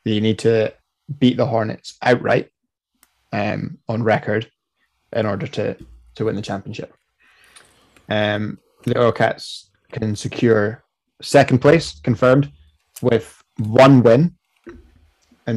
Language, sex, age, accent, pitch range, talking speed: English, male, 20-39, British, 105-125 Hz, 115 wpm